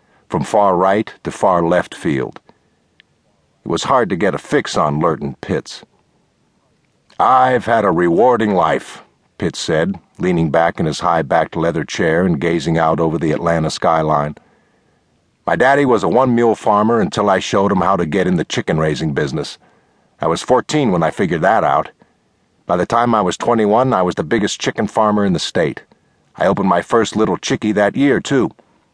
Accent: American